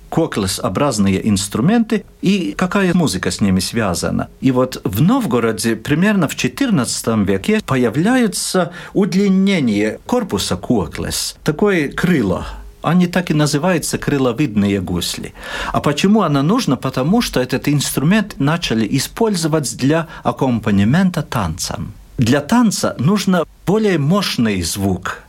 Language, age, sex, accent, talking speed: Russian, 50-69, male, native, 110 wpm